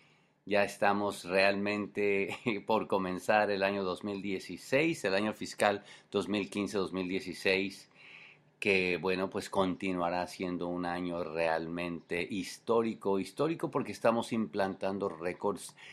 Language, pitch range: English, 90-110 Hz